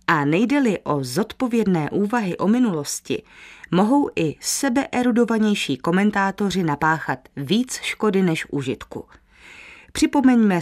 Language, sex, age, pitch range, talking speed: Czech, female, 30-49, 155-210 Hz, 95 wpm